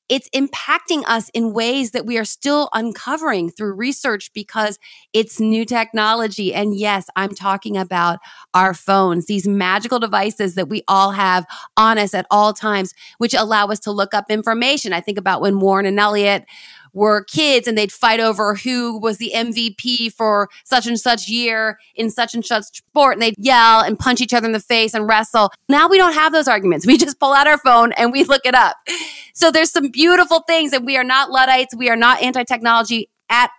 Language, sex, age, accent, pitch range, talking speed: English, female, 30-49, American, 200-250 Hz, 200 wpm